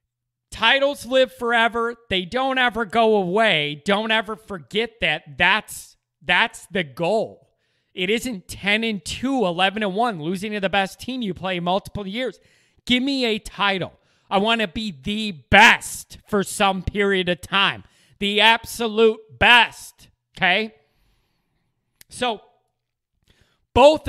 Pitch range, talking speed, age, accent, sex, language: 180-235 Hz, 130 wpm, 30-49, American, male, English